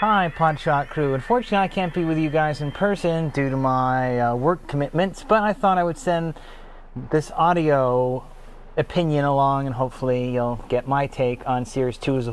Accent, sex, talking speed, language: American, male, 190 wpm, English